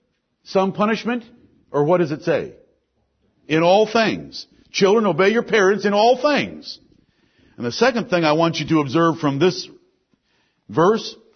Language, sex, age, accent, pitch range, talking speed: English, male, 50-69, American, 170-215 Hz, 155 wpm